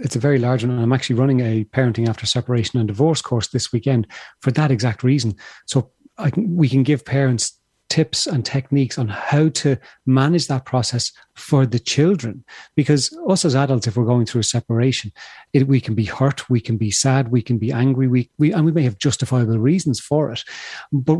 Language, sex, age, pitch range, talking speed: English, male, 30-49, 120-150 Hz, 210 wpm